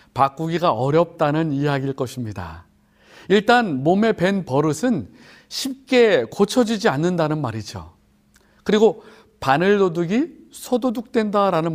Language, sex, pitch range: Korean, male, 145-215 Hz